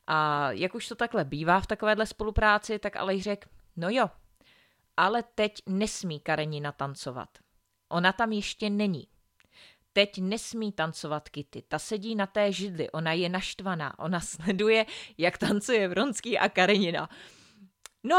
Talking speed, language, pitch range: 140 wpm, Czech, 180-225 Hz